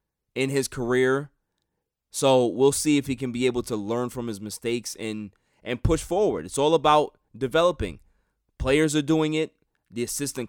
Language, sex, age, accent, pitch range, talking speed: English, male, 20-39, American, 110-150 Hz, 170 wpm